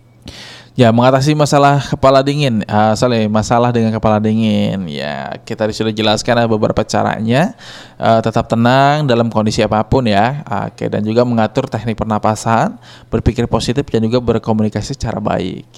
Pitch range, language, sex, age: 110-135 Hz, Indonesian, male, 20-39